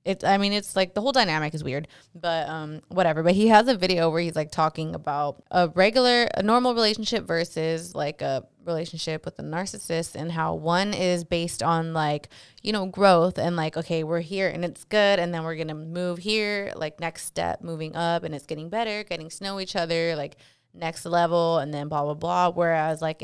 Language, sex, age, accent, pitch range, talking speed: English, female, 20-39, American, 160-190 Hz, 215 wpm